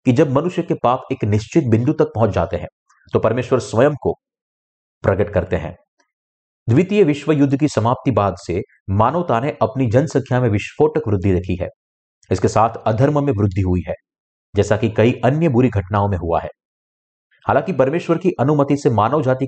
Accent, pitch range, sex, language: native, 100-140 Hz, male, Hindi